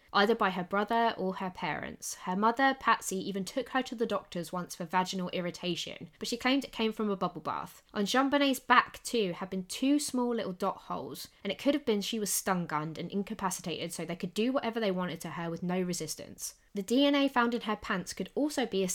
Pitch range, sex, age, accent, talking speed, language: 180-250 Hz, female, 20-39, British, 230 wpm, English